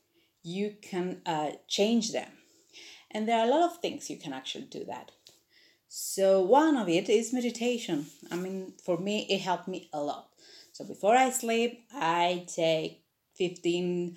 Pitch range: 165-210 Hz